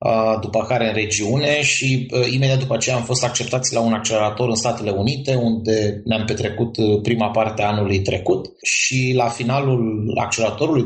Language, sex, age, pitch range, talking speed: Romanian, male, 20-39, 110-125 Hz, 160 wpm